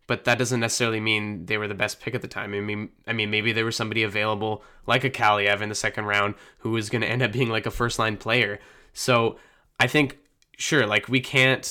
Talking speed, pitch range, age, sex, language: 240 wpm, 105-130 Hz, 20-39, male, English